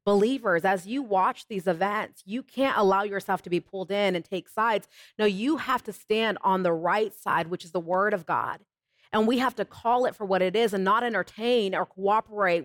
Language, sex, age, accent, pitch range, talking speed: English, female, 30-49, American, 200-245 Hz, 225 wpm